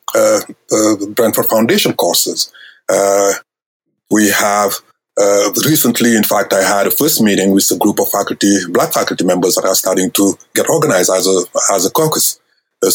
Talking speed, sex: 175 wpm, male